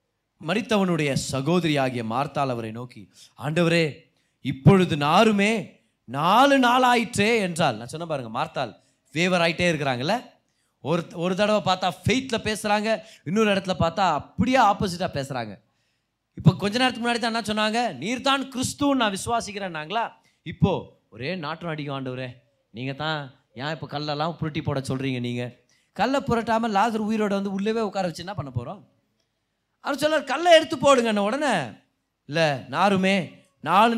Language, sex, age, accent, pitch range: Tamil, male, 30-49, native, 140-230 Hz